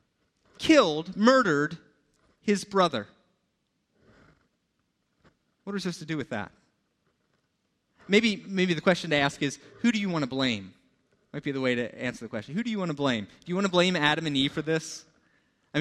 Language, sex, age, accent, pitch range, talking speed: English, male, 30-49, American, 145-195 Hz, 190 wpm